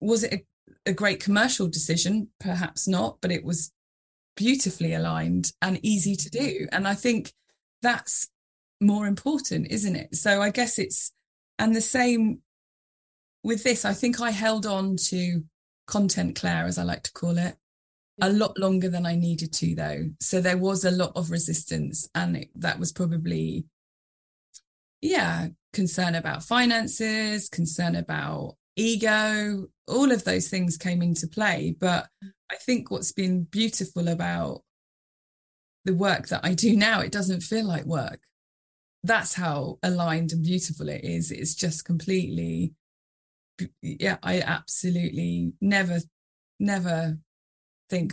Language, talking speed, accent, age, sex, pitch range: English, 145 wpm, British, 20-39, female, 160-205 Hz